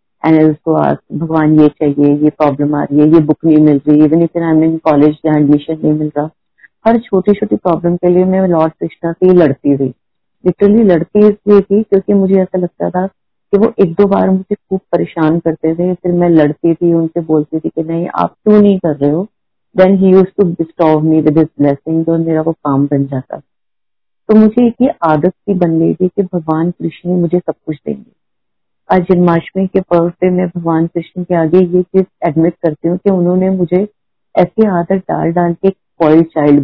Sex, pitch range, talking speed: female, 155-185 Hz, 175 wpm